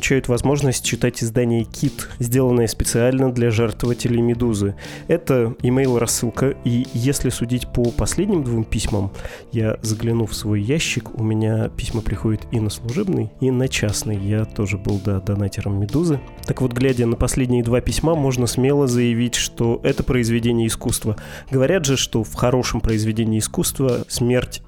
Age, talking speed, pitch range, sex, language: 20-39, 145 wpm, 110-130 Hz, male, Russian